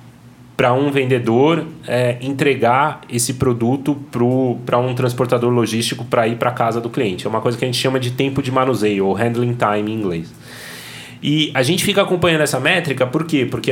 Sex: male